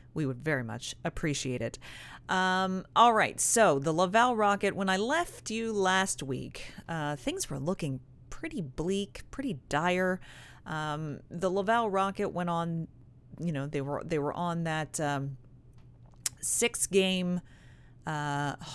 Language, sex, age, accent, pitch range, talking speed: English, female, 30-49, American, 145-190 Hz, 145 wpm